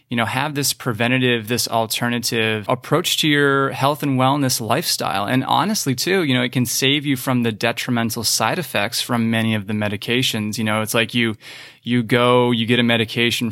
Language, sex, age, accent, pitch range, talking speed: English, male, 20-39, American, 110-130 Hz, 195 wpm